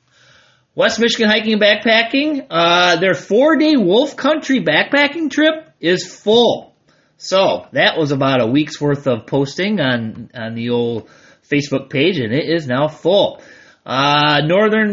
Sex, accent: male, American